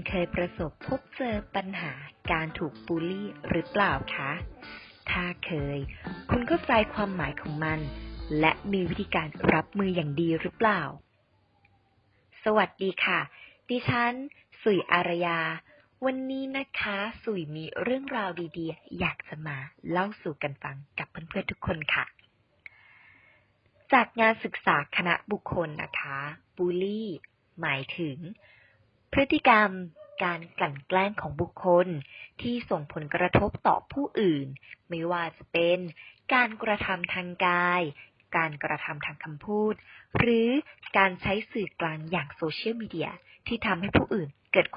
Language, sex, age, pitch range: English, female, 20-39, 160-210 Hz